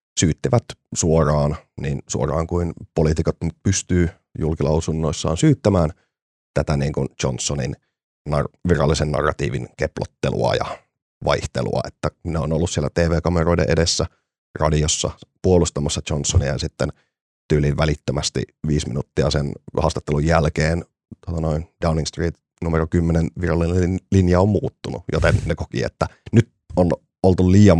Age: 30-49